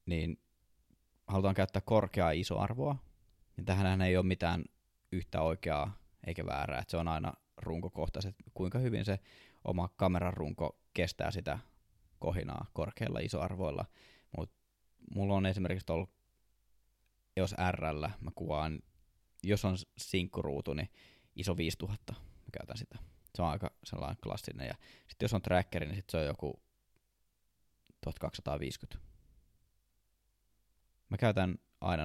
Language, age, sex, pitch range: Finnish, 20-39, male, 85-100 Hz